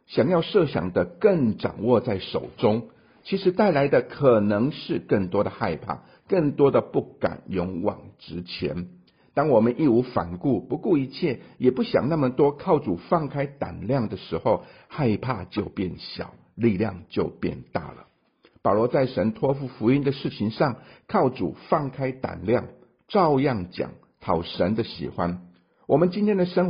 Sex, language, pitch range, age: male, Chinese, 105-140 Hz, 50-69